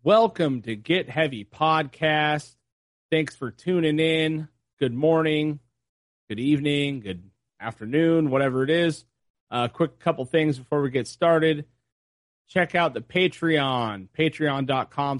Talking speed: 120 wpm